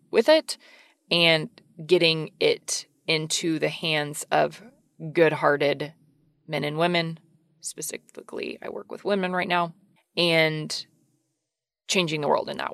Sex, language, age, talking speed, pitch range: female, English, 20-39, 120 wpm, 160-220 Hz